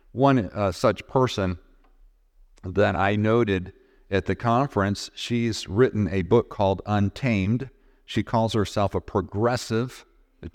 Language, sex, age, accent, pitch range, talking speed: English, male, 50-69, American, 95-115 Hz, 125 wpm